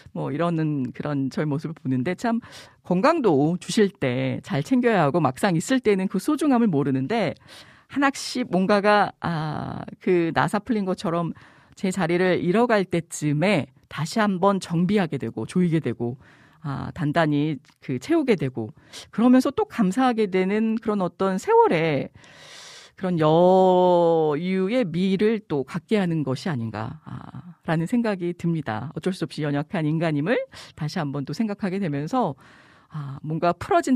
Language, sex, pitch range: Korean, female, 150-210 Hz